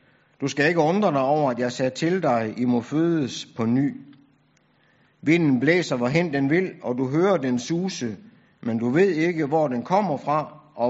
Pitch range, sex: 125-170 Hz, male